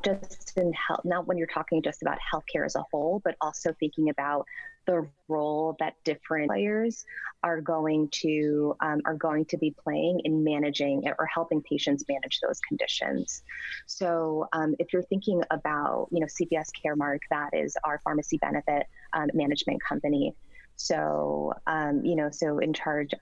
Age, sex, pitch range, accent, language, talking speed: 20-39, female, 150-175 Hz, American, English, 160 wpm